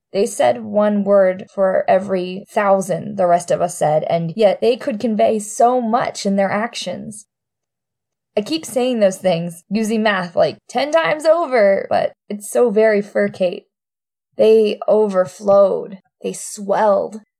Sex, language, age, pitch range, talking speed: female, English, 20-39, 190-235 Hz, 145 wpm